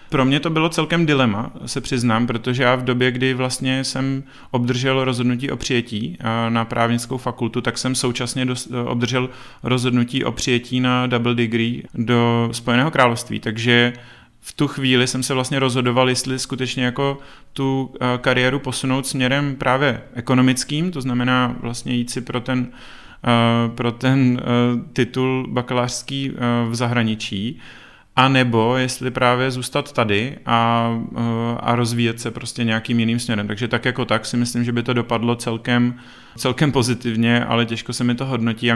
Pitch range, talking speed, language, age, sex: 120-130 Hz, 150 wpm, Czech, 30-49, male